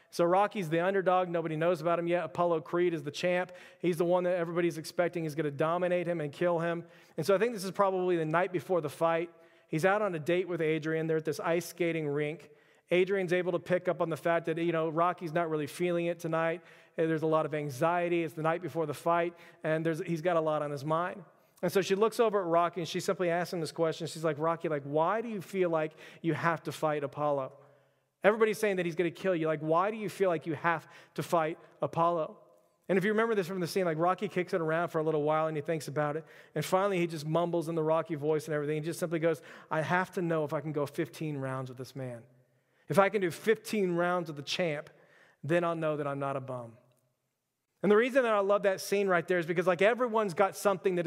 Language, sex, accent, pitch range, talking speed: English, male, American, 160-185 Hz, 260 wpm